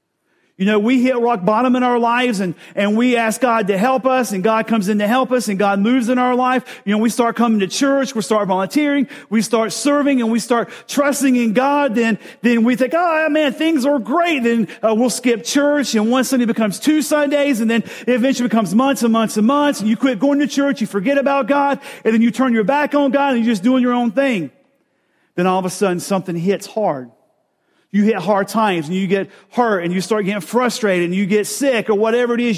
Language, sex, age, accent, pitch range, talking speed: English, male, 40-59, American, 200-255 Hz, 245 wpm